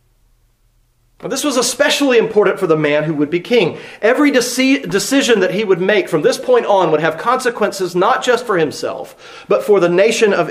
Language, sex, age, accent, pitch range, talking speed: English, male, 40-59, American, 170-245 Hz, 190 wpm